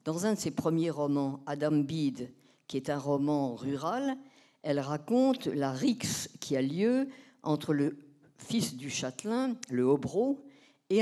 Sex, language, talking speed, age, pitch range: female, French, 150 wpm, 50-69, 135-225 Hz